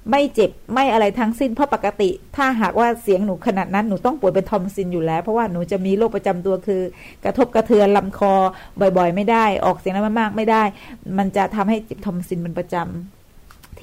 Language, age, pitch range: Thai, 20-39, 190-235 Hz